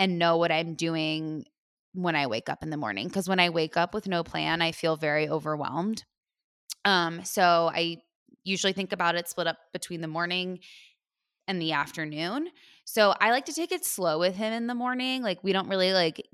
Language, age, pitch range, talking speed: English, 20-39, 160-190 Hz, 205 wpm